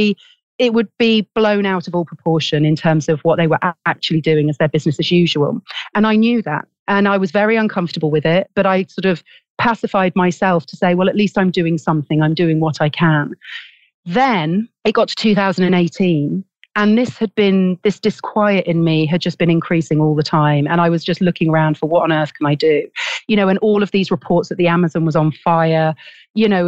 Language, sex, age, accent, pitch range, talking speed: English, female, 40-59, British, 160-210 Hz, 225 wpm